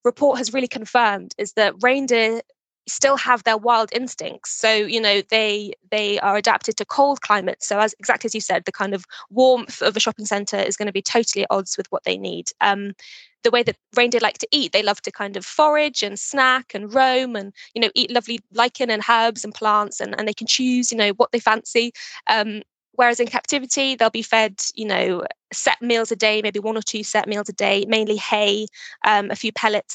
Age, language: 20-39, English